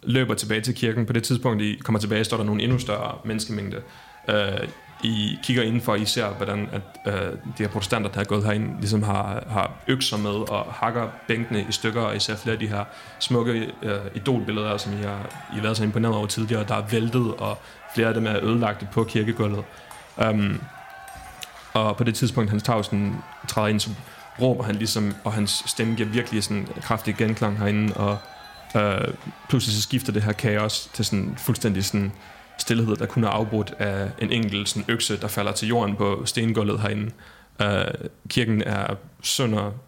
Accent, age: native, 30-49